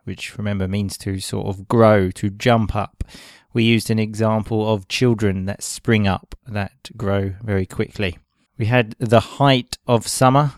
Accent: British